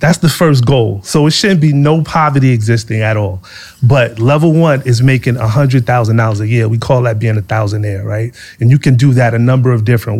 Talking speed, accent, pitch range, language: 220 wpm, American, 115-140 Hz, English